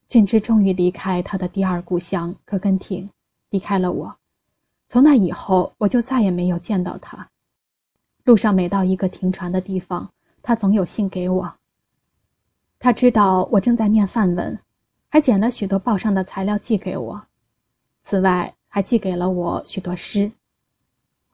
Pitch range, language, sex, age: 180-210 Hz, Chinese, female, 10-29